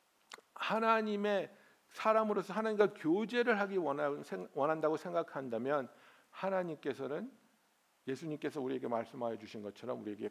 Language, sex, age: Korean, male, 60-79